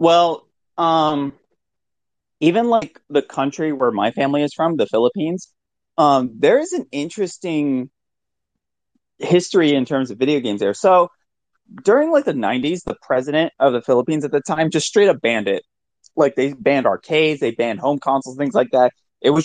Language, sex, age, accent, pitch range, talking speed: English, male, 30-49, American, 135-185 Hz, 175 wpm